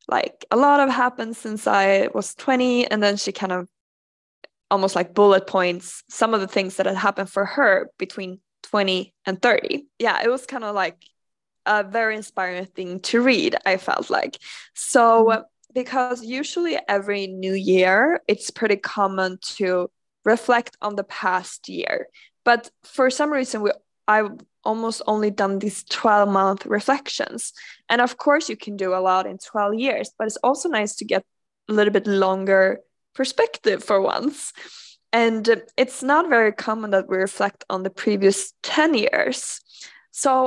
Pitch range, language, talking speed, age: 195-240 Hz, Swedish, 165 wpm, 20-39